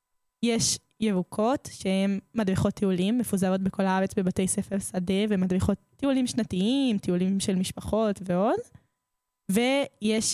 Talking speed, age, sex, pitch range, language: 110 wpm, 10-29, female, 195-225 Hz, Hebrew